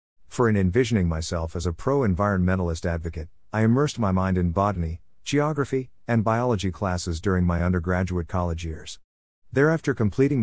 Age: 50-69